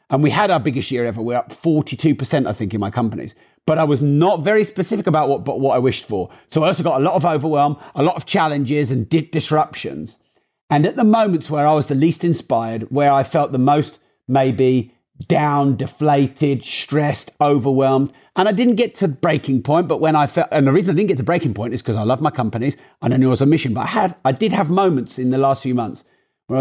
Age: 40-59